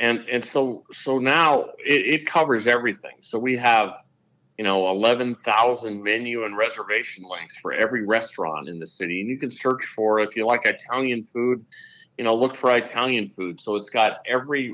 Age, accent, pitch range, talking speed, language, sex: 50-69, American, 100-125 Hz, 185 wpm, English, male